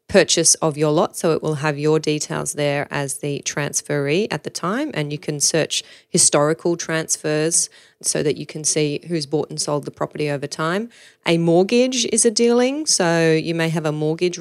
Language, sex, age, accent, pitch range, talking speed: English, female, 30-49, Australian, 145-165 Hz, 195 wpm